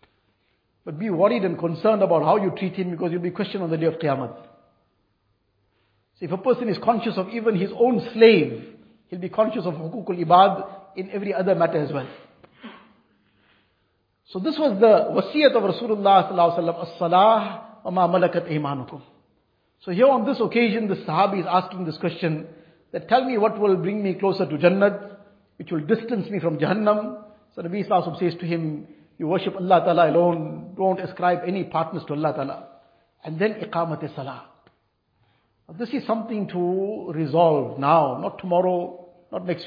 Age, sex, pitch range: 50-69, male, 165-210 Hz